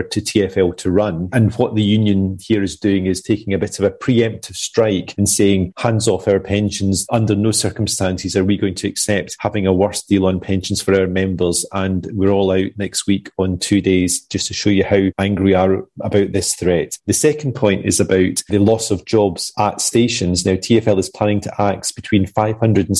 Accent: British